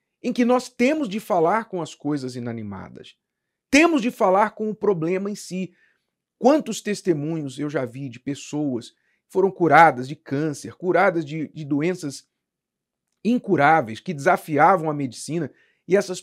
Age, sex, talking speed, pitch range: 40-59, male, 150 wpm, 165-245 Hz